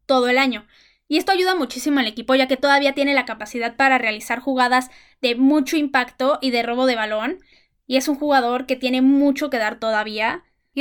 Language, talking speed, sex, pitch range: Spanish, 205 wpm, female, 245-280 Hz